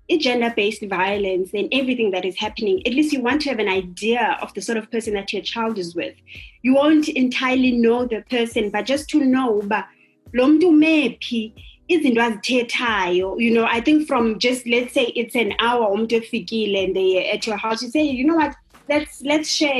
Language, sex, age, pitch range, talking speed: English, female, 20-39, 215-270 Hz, 185 wpm